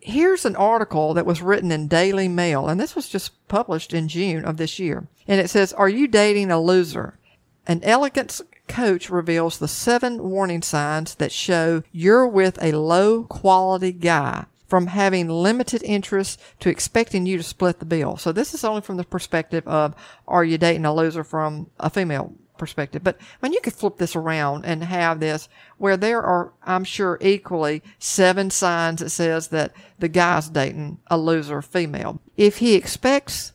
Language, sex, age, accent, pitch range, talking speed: English, female, 50-69, American, 165-200 Hz, 180 wpm